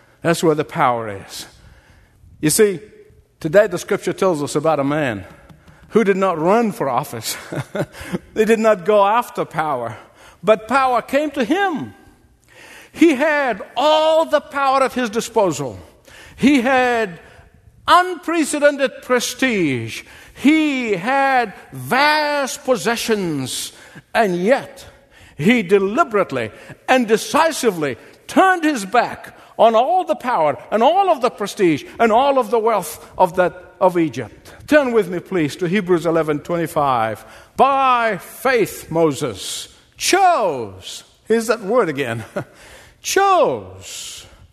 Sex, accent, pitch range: male, American, 160-270 Hz